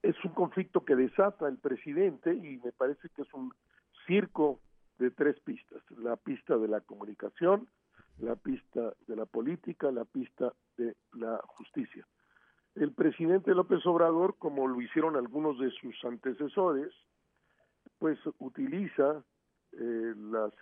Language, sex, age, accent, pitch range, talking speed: Spanish, male, 50-69, Mexican, 120-160 Hz, 135 wpm